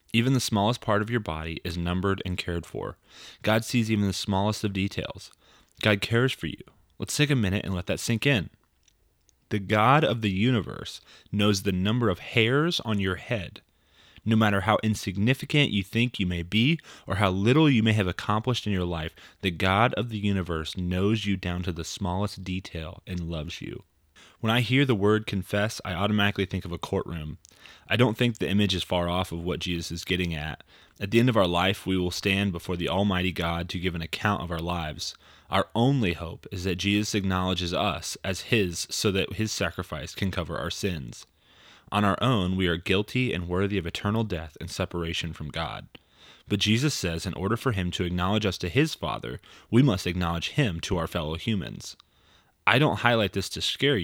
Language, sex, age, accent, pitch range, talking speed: English, male, 30-49, American, 90-110 Hz, 205 wpm